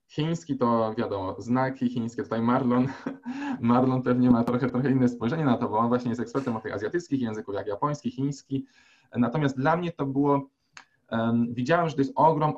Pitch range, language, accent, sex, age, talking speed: 120-140 Hz, Polish, native, male, 20-39, 180 wpm